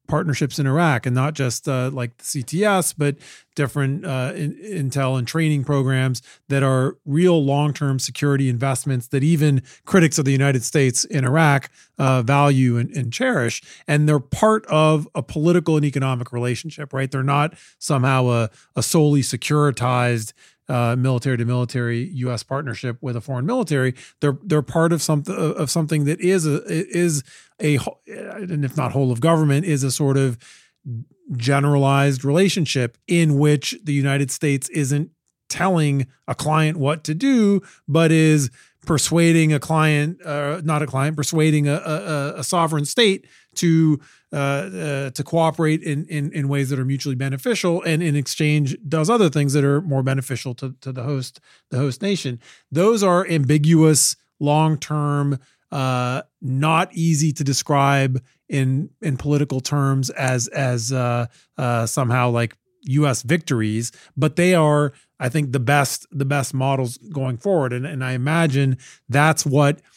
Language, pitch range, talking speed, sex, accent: English, 130-155 Hz, 160 wpm, male, American